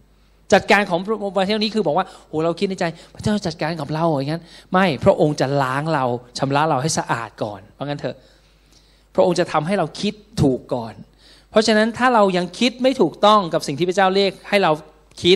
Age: 20-39